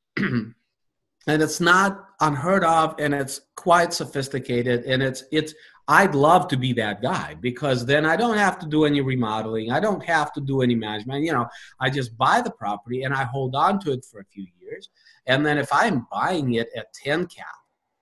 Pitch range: 125-170 Hz